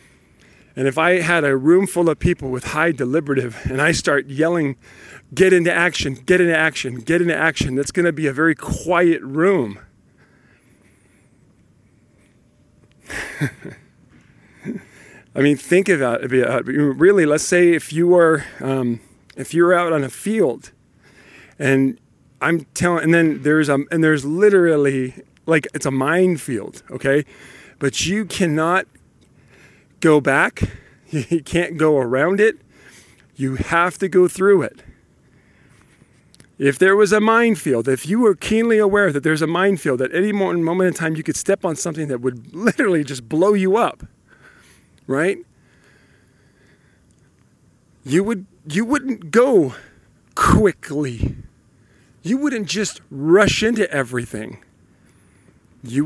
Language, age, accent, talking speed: English, 40-59, American, 135 wpm